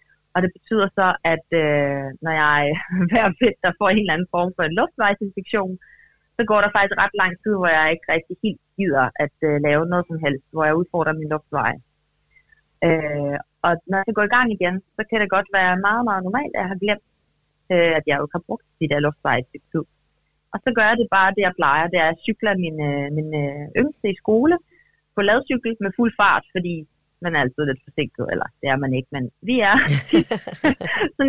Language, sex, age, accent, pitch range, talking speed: Danish, female, 30-49, native, 160-220 Hz, 215 wpm